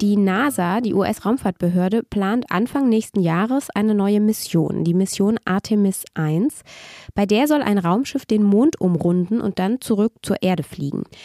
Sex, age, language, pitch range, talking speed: female, 20-39, German, 185-230 Hz, 155 wpm